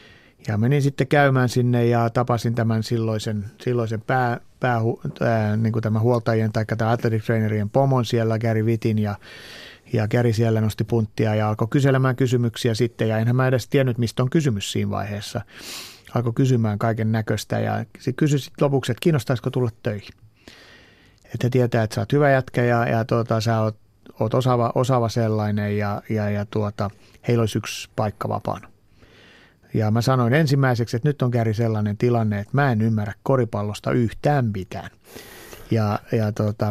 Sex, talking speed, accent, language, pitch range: male, 165 wpm, native, Finnish, 110-125 Hz